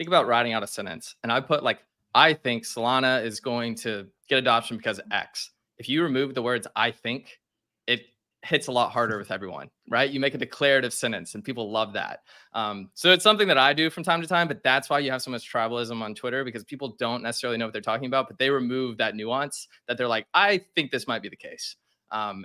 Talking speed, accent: 240 wpm, American